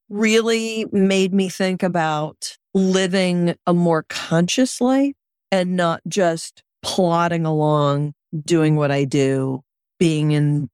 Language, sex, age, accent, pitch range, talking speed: English, female, 40-59, American, 155-195 Hz, 115 wpm